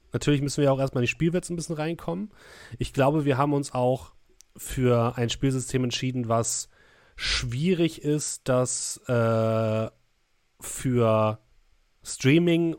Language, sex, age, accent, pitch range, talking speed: German, male, 30-49, German, 110-140 Hz, 130 wpm